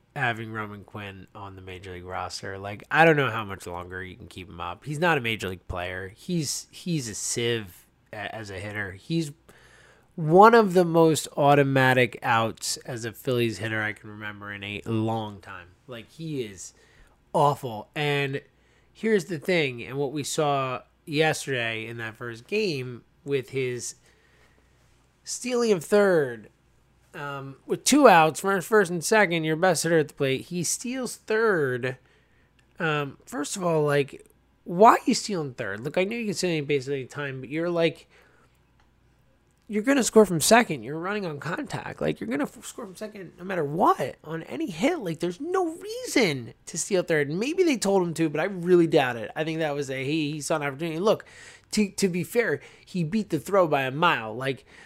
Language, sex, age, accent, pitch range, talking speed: English, male, 20-39, American, 115-180 Hz, 190 wpm